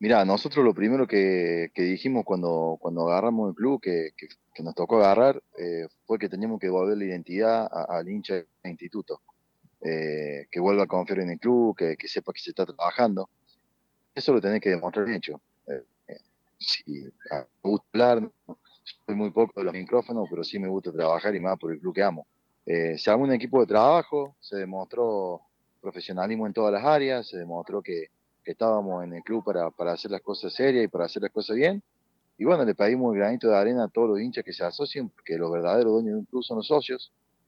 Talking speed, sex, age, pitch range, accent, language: 220 wpm, male, 30-49, 85-115 Hz, Argentinian, Spanish